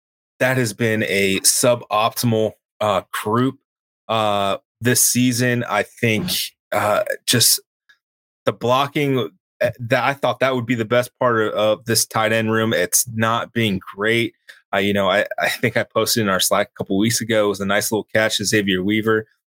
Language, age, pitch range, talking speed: English, 20-39, 105-125 Hz, 180 wpm